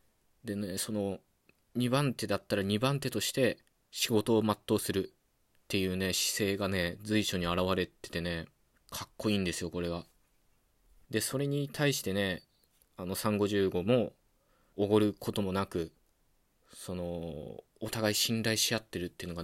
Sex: male